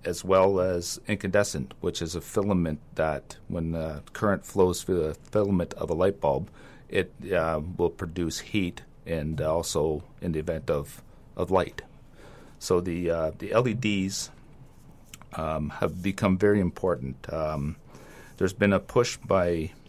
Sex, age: male, 40-59